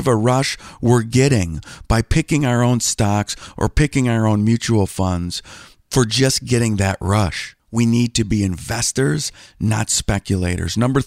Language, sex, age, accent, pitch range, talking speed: English, male, 50-69, American, 105-150 Hz, 155 wpm